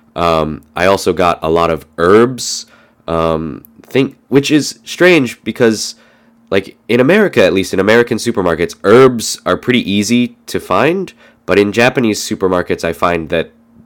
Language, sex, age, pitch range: Japanese, male, 20-39, 85-115 Hz